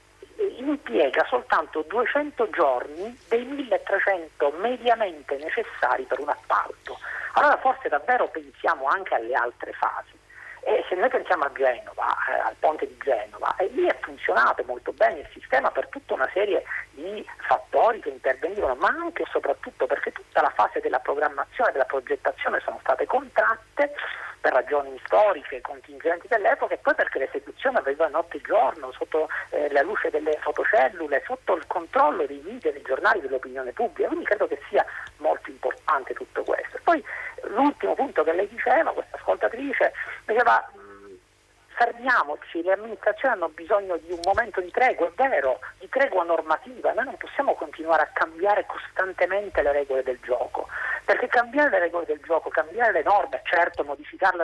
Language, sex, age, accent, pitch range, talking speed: Italian, male, 40-59, native, 180-295 Hz, 160 wpm